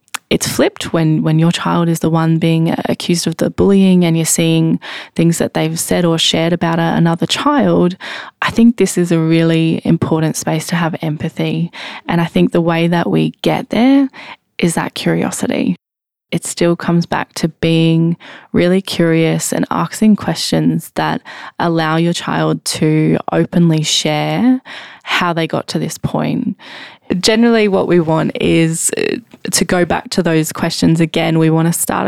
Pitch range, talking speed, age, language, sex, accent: 160-180 Hz, 165 wpm, 20-39, English, female, Australian